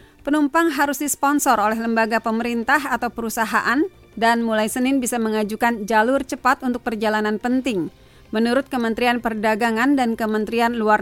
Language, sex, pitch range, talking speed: Indonesian, female, 215-260 Hz, 130 wpm